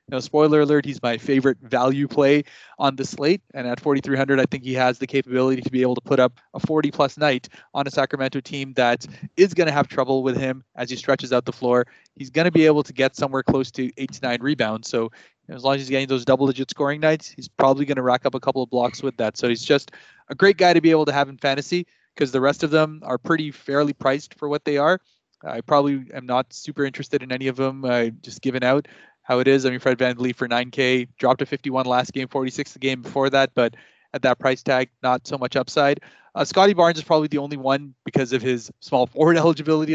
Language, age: English, 20-39